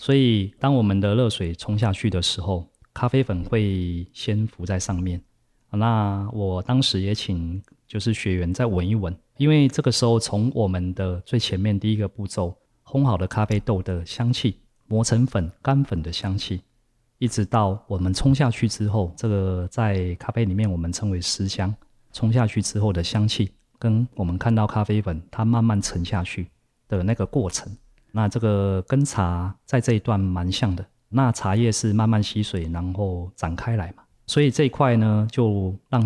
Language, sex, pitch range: Chinese, male, 95-120 Hz